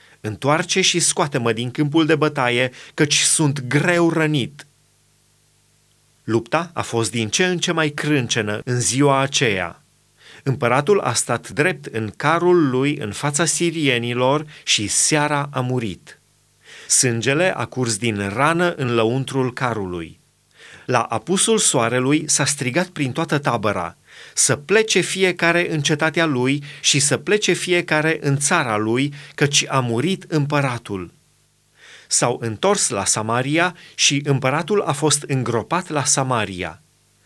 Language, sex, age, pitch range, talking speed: Romanian, male, 30-49, 120-165 Hz, 130 wpm